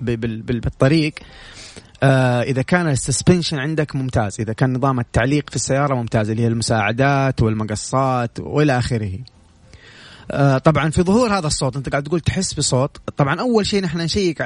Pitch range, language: 125-165 Hz, Arabic